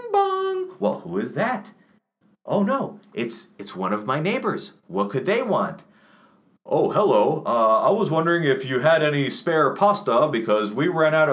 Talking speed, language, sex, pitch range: 175 wpm, English, male, 160-230 Hz